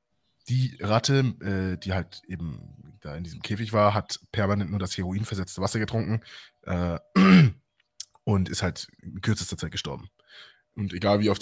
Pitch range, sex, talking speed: 95-115 Hz, male, 160 wpm